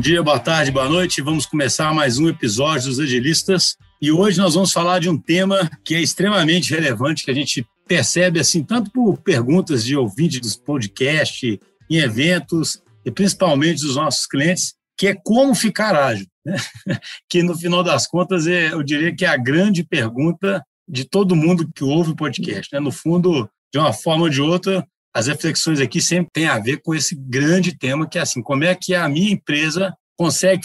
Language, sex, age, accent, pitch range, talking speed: Portuguese, male, 60-79, Brazilian, 140-180 Hz, 190 wpm